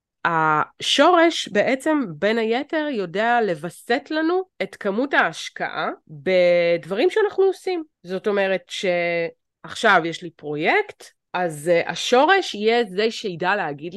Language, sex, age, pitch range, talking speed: Hebrew, female, 20-39, 170-245 Hz, 105 wpm